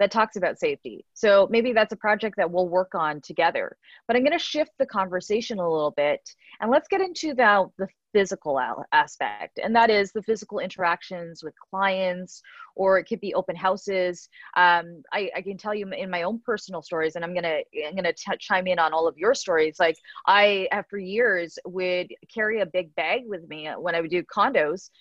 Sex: female